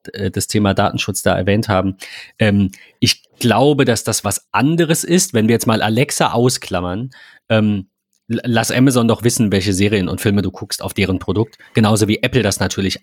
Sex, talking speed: male, 180 wpm